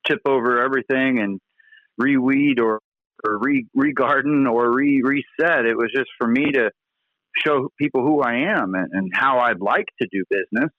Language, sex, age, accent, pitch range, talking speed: English, male, 50-69, American, 115-145 Hz, 165 wpm